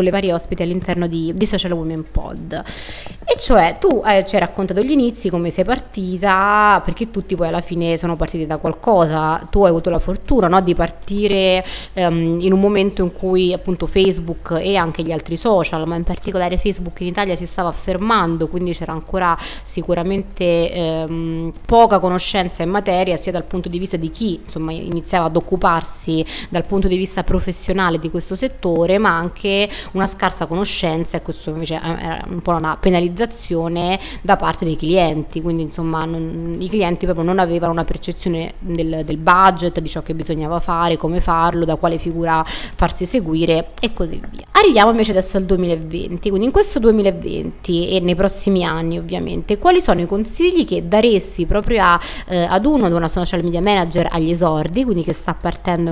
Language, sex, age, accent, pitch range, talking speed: Italian, female, 20-39, native, 170-195 Hz, 180 wpm